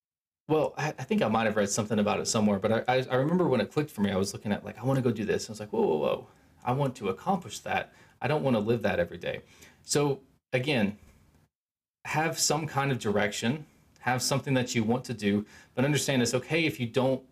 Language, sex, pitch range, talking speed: English, male, 105-140 Hz, 245 wpm